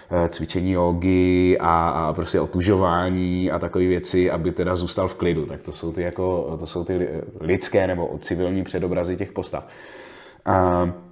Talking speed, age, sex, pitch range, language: 155 wpm, 30-49, male, 90-95 Hz, Czech